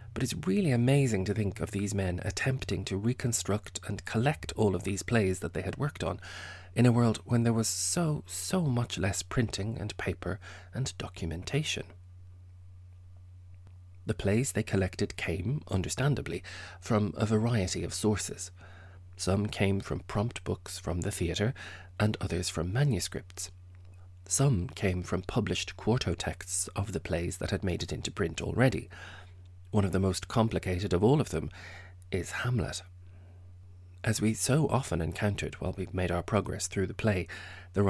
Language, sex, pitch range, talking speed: English, male, 90-110 Hz, 160 wpm